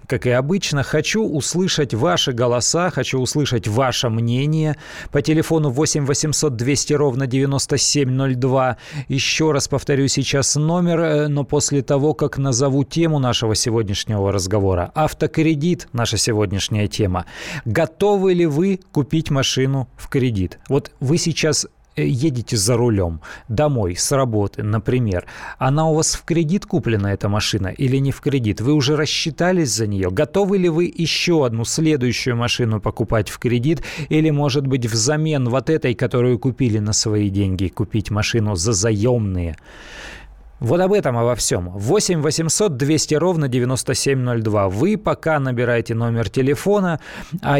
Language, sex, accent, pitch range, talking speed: Russian, male, native, 120-155 Hz, 140 wpm